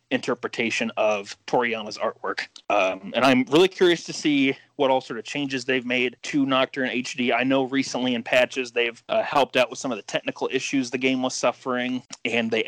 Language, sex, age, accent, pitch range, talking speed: English, male, 30-49, American, 115-135 Hz, 200 wpm